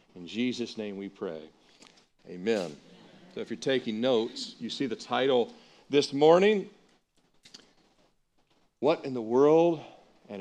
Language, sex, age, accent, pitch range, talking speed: English, male, 50-69, American, 115-160 Hz, 125 wpm